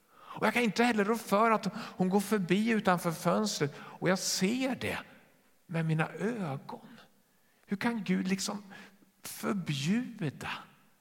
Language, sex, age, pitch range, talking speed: Swedish, male, 50-69, 130-200 Hz, 130 wpm